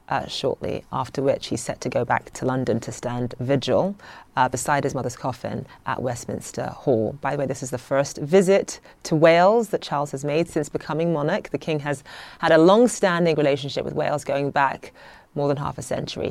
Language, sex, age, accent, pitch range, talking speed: English, female, 30-49, British, 145-190 Hz, 200 wpm